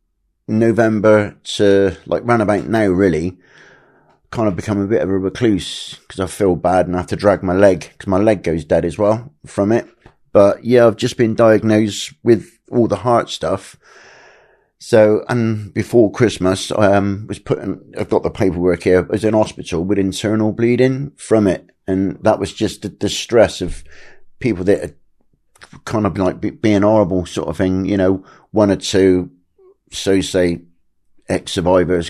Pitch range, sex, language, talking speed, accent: 90-105 Hz, male, English, 175 wpm, British